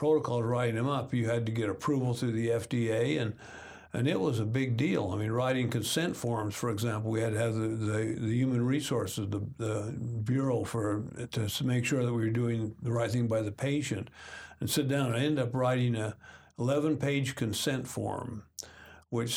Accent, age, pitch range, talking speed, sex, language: American, 60-79, 115-135 Hz, 205 wpm, male, English